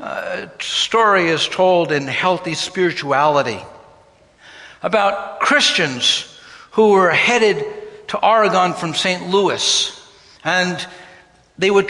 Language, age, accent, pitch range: English, 60-79, American, 175-220 Hz